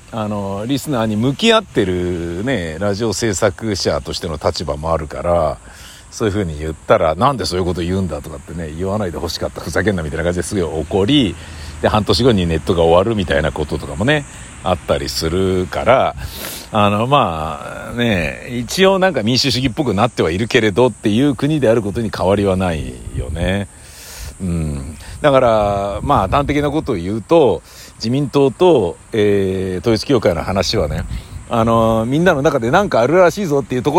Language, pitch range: Japanese, 90-135 Hz